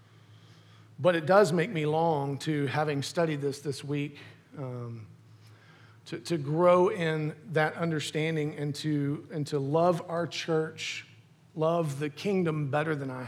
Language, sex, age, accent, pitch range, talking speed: English, male, 40-59, American, 125-165 Hz, 145 wpm